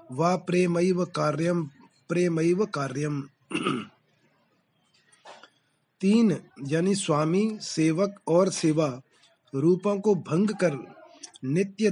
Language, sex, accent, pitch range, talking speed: Hindi, male, native, 155-195 Hz, 80 wpm